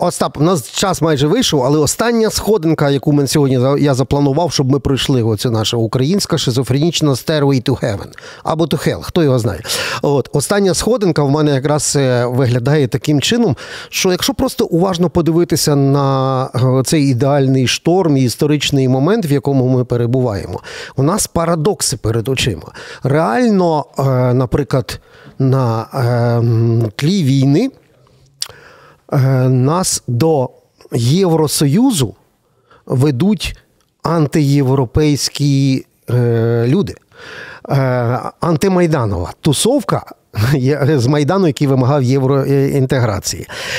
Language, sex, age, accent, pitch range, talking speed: Ukrainian, male, 40-59, native, 130-165 Hz, 105 wpm